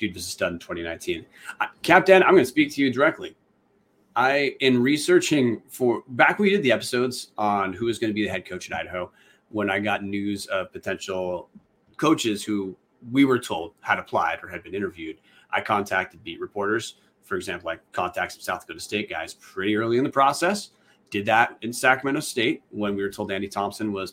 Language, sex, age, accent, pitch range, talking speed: English, male, 30-49, American, 100-135 Hz, 200 wpm